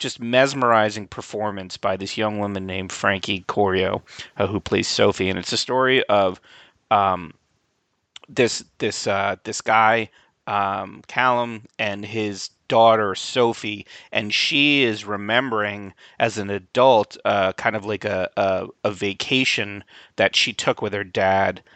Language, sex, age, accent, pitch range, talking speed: English, male, 30-49, American, 105-125 Hz, 145 wpm